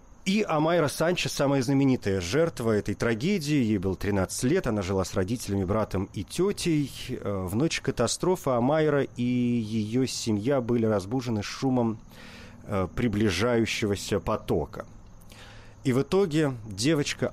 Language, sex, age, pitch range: Russian, male, 40-59, 100-135 Hz